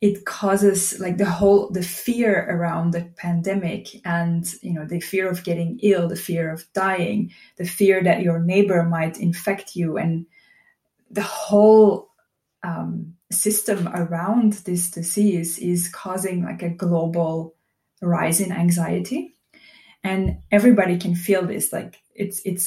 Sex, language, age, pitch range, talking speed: female, English, 20-39, 170-200 Hz, 145 wpm